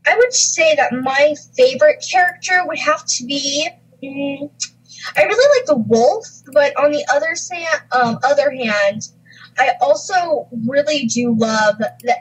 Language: English